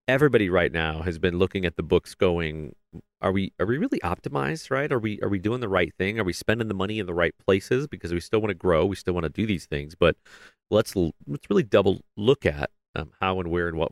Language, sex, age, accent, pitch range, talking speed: English, male, 40-59, American, 90-115 Hz, 260 wpm